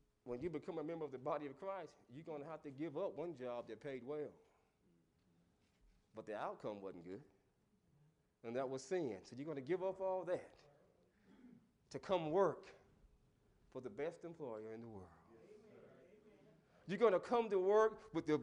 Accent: American